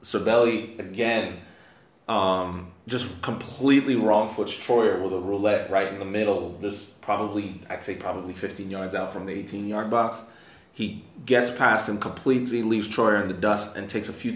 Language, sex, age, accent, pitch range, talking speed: English, male, 20-39, American, 95-115 Hz, 165 wpm